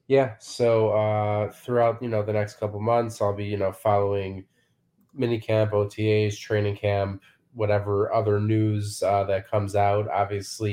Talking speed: 150 wpm